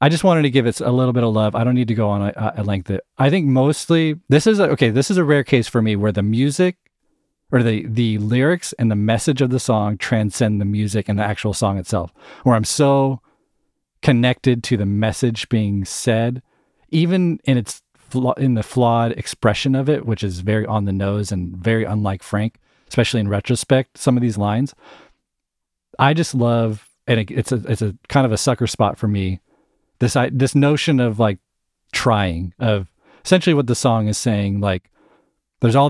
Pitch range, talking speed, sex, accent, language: 105-130 Hz, 205 wpm, male, American, English